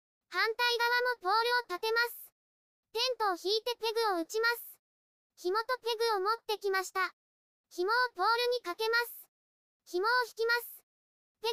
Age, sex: 20-39, male